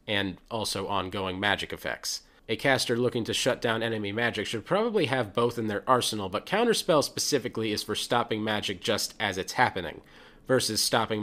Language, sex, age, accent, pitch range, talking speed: English, male, 30-49, American, 105-130 Hz, 175 wpm